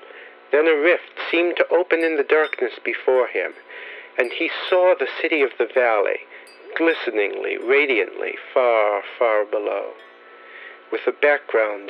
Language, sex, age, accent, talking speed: English, male, 50-69, American, 135 wpm